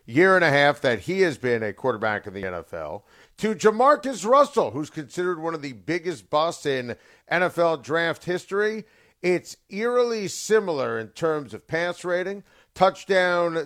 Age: 50-69